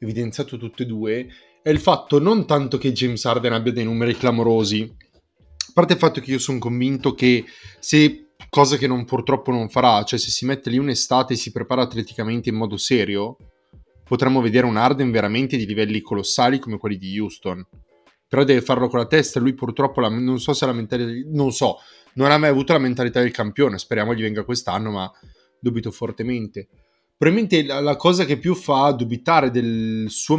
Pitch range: 115-140 Hz